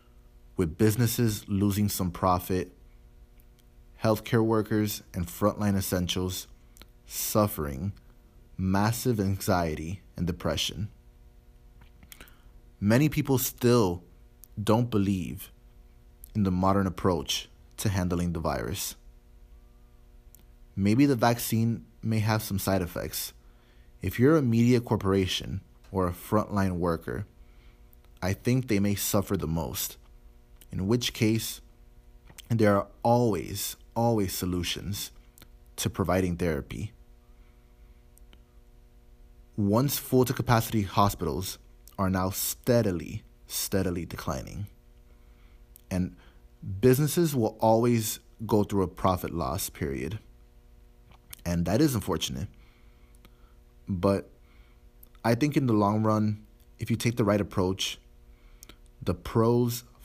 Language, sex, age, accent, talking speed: English, male, 20-39, American, 100 wpm